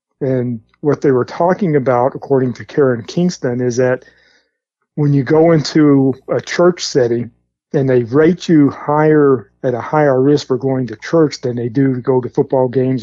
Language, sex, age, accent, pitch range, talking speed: English, male, 50-69, American, 120-150 Hz, 185 wpm